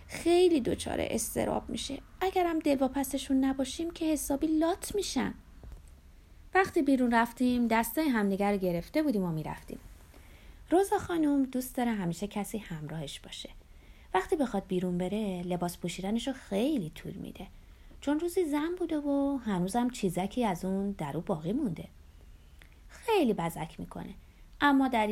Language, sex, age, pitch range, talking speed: Persian, female, 30-49, 180-275 Hz, 130 wpm